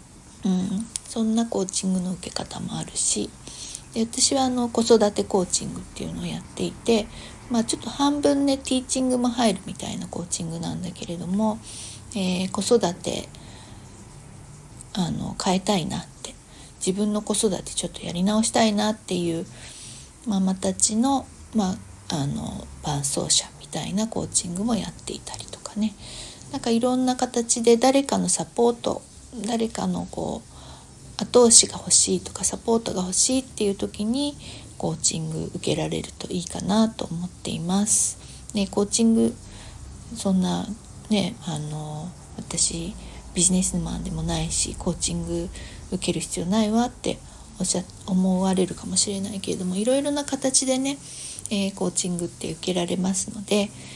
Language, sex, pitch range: Japanese, female, 175-225 Hz